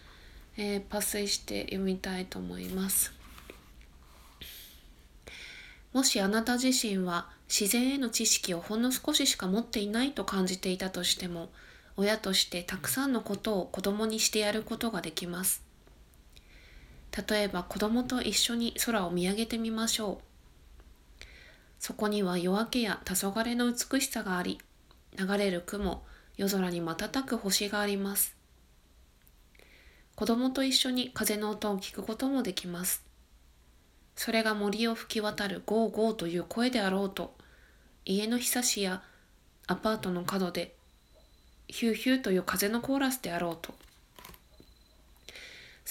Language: Japanese